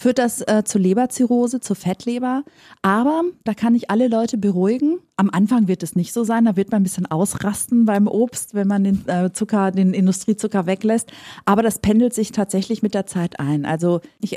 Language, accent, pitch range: German, German, 190-245 Hz